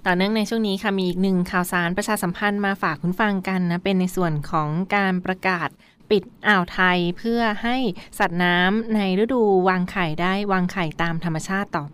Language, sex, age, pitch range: Thai, female, 20-39, 175-210 Hz